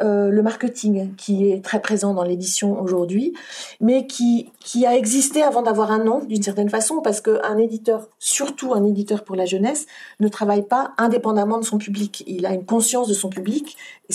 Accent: French